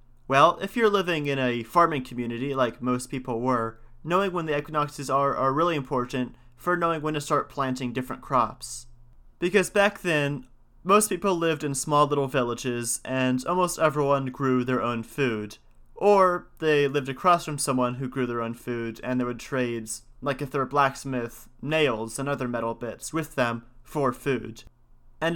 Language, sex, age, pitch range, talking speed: English, male, 30-49, 120-145 Hz, 180 wpm